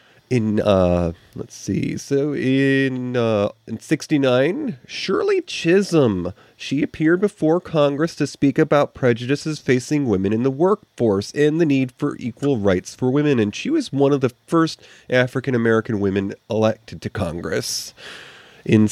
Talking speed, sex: 145 wpm, male